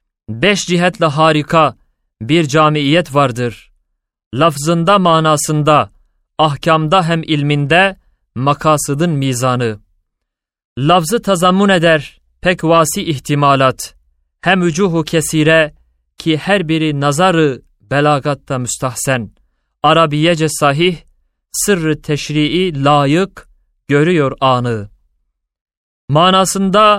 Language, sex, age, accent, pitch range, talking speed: Turkish, male, 30-49, native, 140-170 Hz, 80 wpm